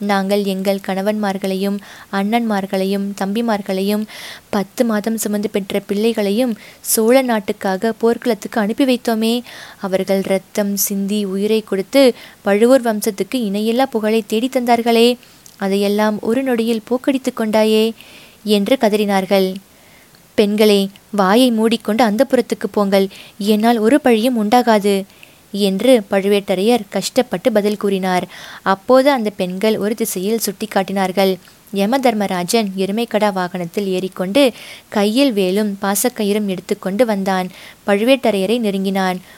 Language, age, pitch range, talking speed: Tamil, 20-39, 195-230 Hz, 100 wpm